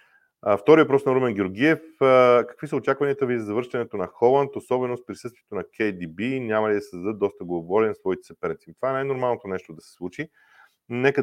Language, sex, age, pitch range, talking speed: Bulgarian, male, 40-59, 105-155 Hz, 180 wpm